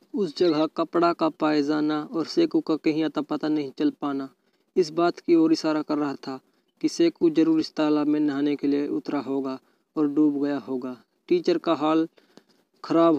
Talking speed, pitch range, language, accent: 195 wpm, 145-165 Hz, Hindi, native